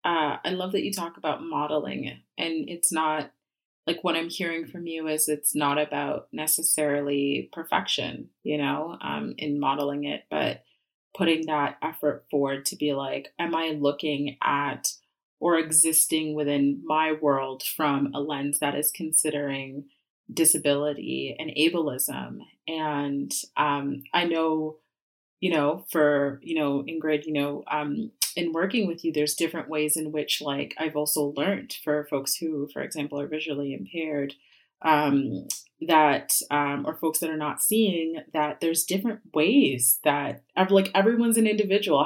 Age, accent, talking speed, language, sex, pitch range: 30-49, American, 155 wpm, English, female, 145-170 Hz